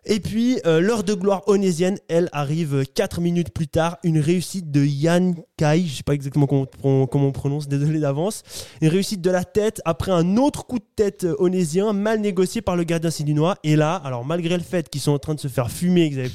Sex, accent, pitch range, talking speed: male, French, 155-200 Hz, 240 wpm